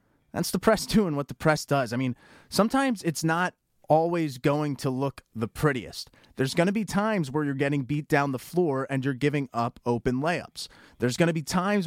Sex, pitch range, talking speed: male, 120-155 Hz, 215 wpm